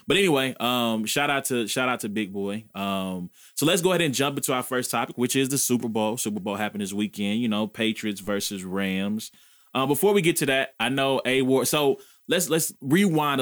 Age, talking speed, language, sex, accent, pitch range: 20-39, 230 wpm, English, male, American, 100-130 Hz